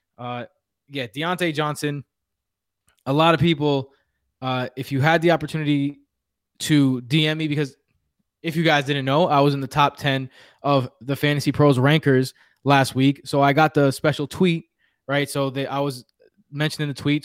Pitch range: 130-150 Hz